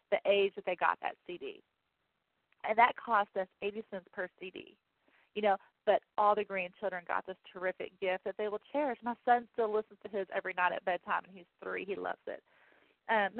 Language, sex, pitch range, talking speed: English, female, 185-225 Hz, 205 wpm